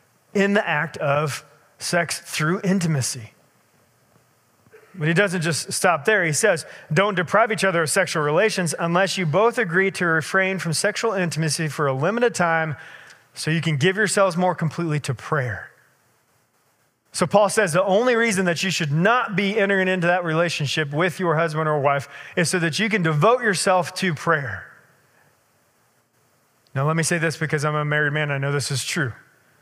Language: English